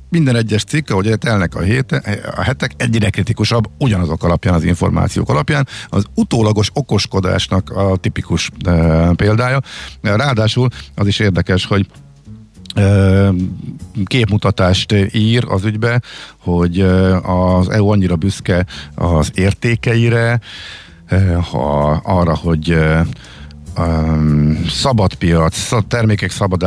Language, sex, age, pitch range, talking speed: Hungarian, male, 50-69, 85-105 Hz, 100 wpm